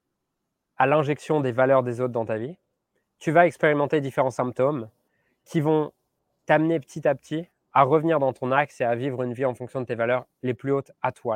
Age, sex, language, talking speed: 20-39, male, French, 210 wpm